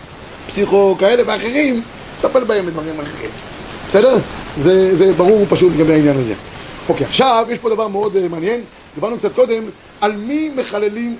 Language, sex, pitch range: Hebrew, male, 195-250 Hz